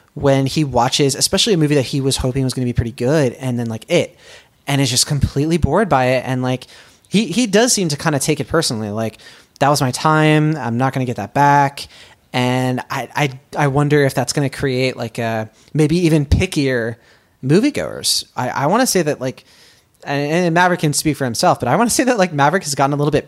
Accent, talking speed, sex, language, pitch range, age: American, 240 wpm, male, English, 125-155 Hz, 20-39